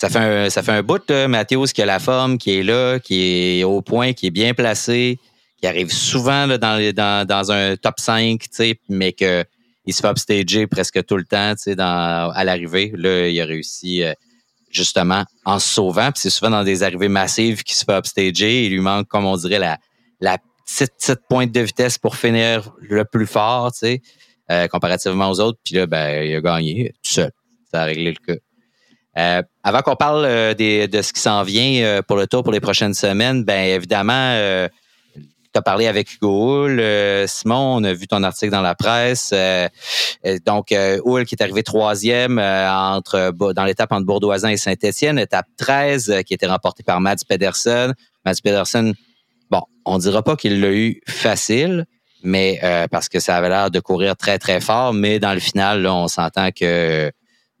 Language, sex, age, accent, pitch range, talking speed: French, male, 30-49, Canadian, 95-120 Hz, 205 wpm